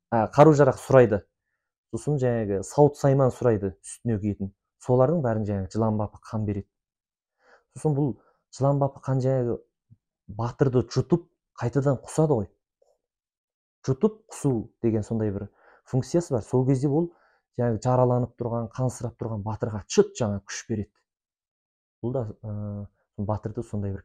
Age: 30-49